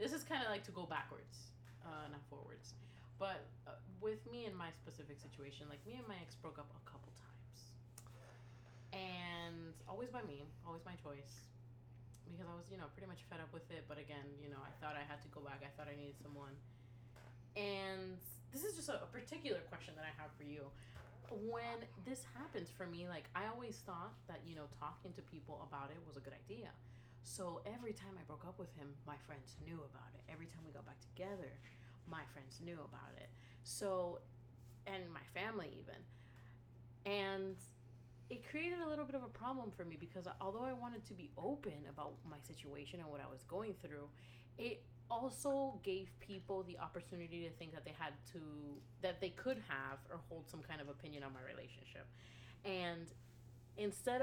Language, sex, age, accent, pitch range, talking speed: English, female, 20-39, American, 125-180 Hz, 200 wpm